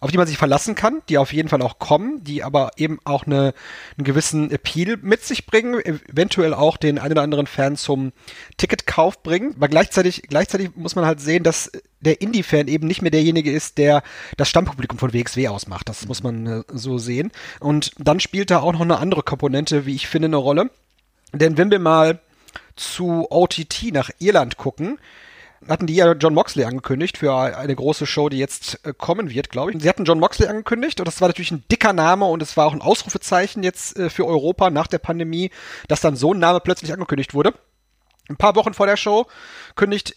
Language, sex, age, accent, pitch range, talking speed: German, male, 30-49, German, 145-180 Hz, 205 wpm